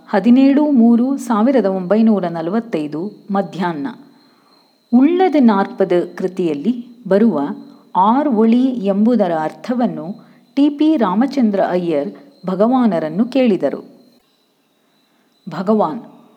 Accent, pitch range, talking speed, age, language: native, 180-255 Hz, 75 wpm, 40-59, Kannada